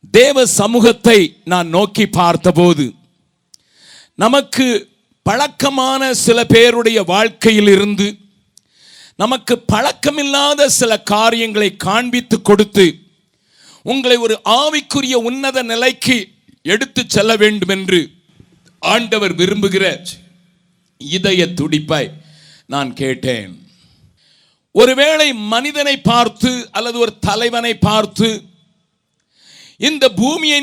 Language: Tamil